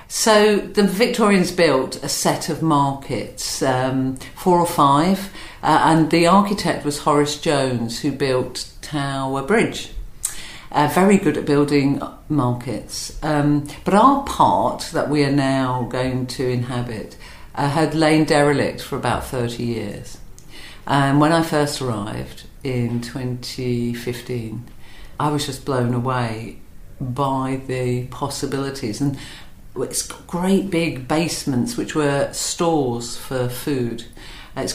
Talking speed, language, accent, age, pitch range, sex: 130 wpm, English, British, 50-69, 130-170 Hz, female